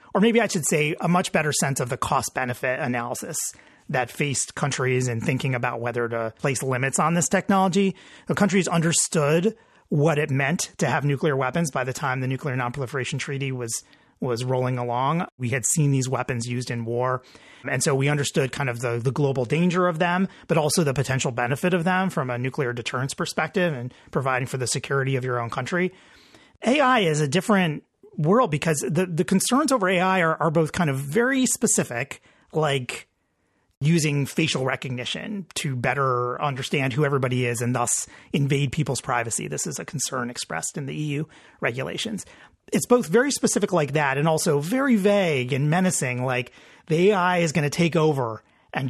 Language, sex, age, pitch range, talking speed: English, male, 30-49, 130-180 Hz, 185 wpm